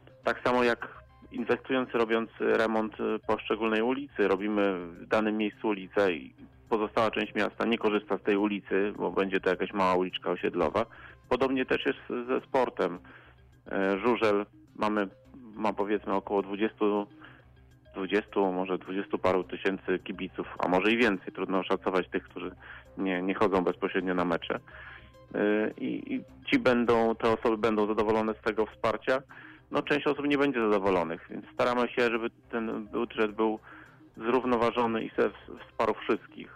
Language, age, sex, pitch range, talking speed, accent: Polish, 30-49, male, 95-120 Hz, 145 wpm, native